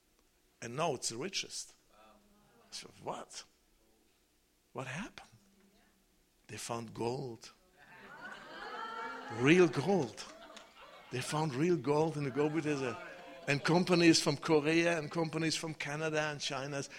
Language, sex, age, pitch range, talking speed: English, male, 60-79, 135-175 Hz, 105 wpm